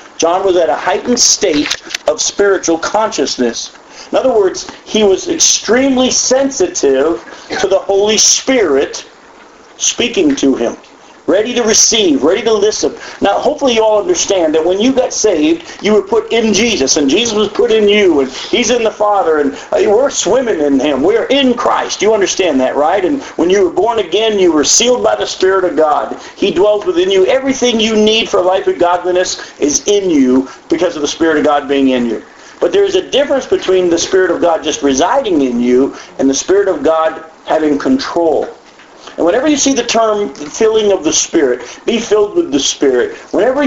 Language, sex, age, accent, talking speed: English, male, 50-69, American, 195 wpm